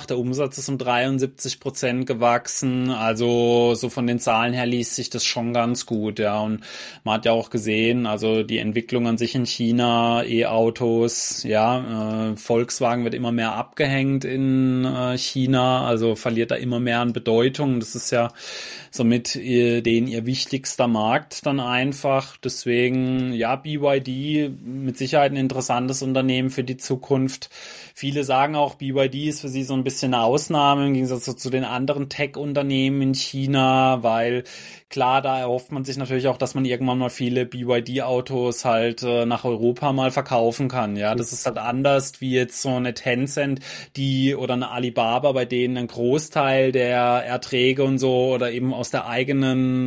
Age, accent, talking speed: 20-39, German, 170 wpm